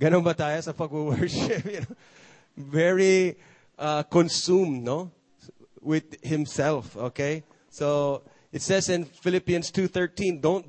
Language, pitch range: English, 125-170 Hz